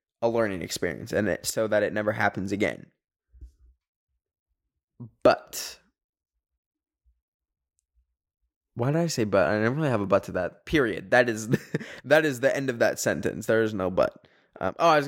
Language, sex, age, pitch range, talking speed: English, male, 10-29, 105-170 Hz, 170 wpm